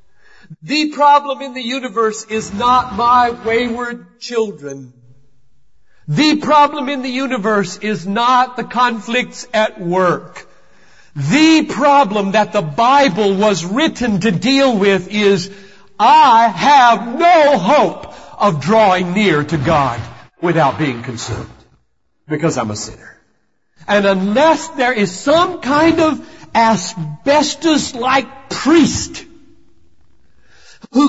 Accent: American